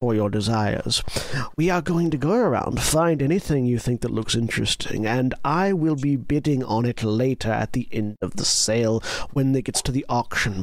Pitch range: 115-155 Hz